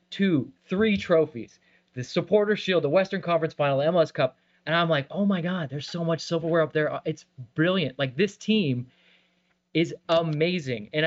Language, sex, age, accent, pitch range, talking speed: English, male, 20-39, American, 145-180 Hz, 175 wpm